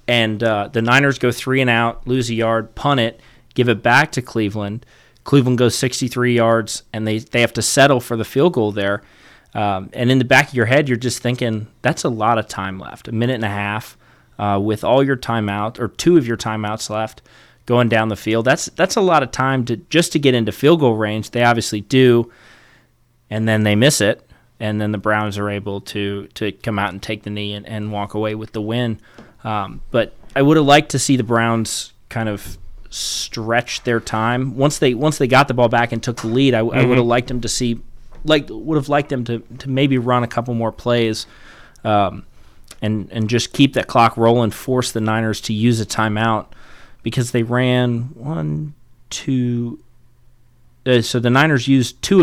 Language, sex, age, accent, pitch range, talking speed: English, male, 30-49, American, 110-125 Hz, 215 wpm